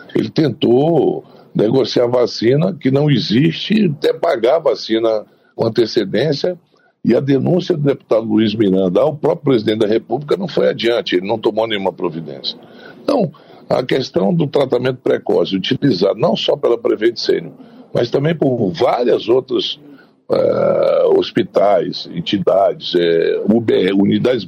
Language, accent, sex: Portuguese, Brazilian, male